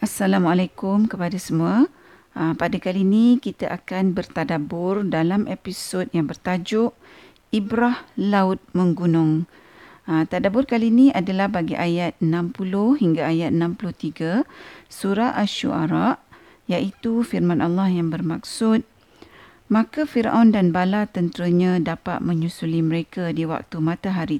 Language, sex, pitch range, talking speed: Malay, female, 165-205 Hz, 110 wpm